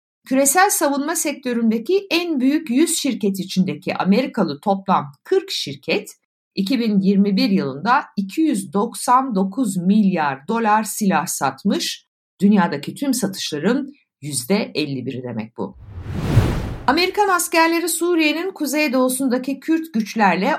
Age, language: 60-79, Turkish